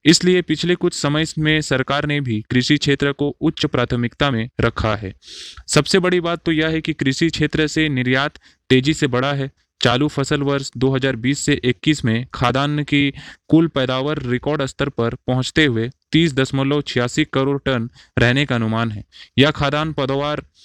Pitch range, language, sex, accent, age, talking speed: 125-150 Hz, Hindi, male, native, 20-39, 165 wpm